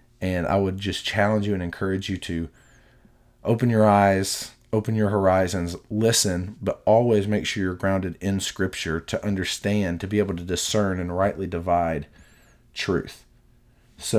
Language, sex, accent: English, male, American